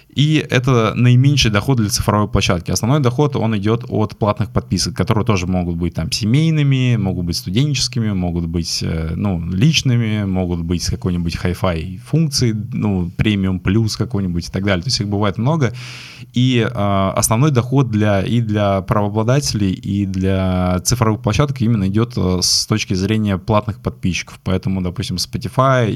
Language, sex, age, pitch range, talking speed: Russian, male, 20-39, 90-120 Hz, 155 wpm